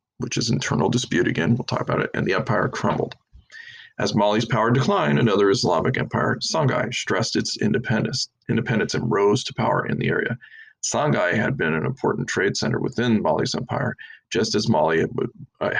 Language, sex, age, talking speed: English, male, 40-59, 180 wpm